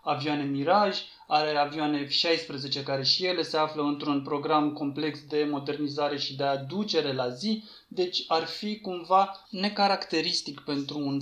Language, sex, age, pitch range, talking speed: Romanian, male, 20-39, 145-175 Hz, 145 wpm